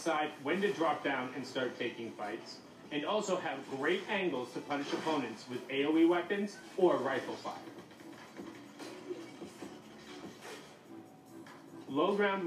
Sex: male